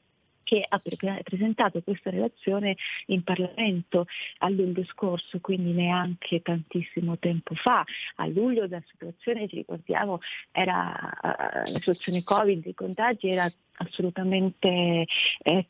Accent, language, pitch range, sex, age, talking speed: native, Italian, 180-215 Hz, female, 30-49, 115 wpm